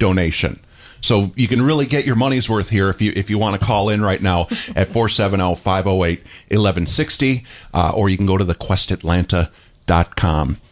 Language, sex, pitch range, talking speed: English, male, 95-120 Hz, 160 wpm